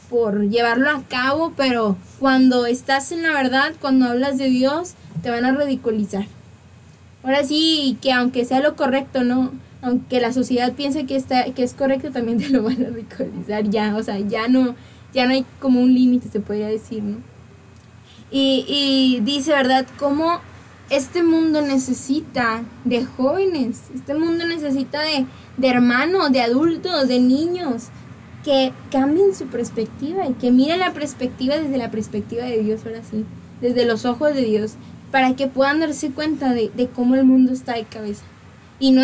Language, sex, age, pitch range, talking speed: Spanish, female, 10-29, 240-285 Hz, 170 wpm